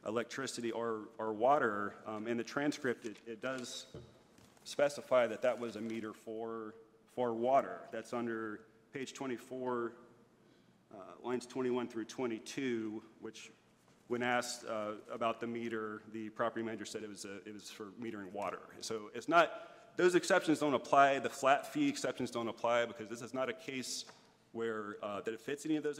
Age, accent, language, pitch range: 40-59, American, English, 110-125 Hz